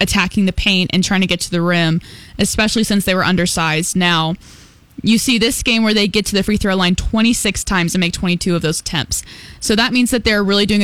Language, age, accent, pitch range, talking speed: English, 10-29, American, 180-215 Hz, 240 wpm